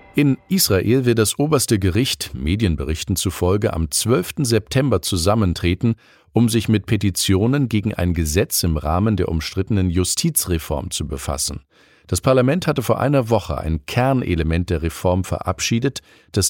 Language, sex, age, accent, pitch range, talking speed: German, male, 50-69, German, 85-115 Hz, 140 wpm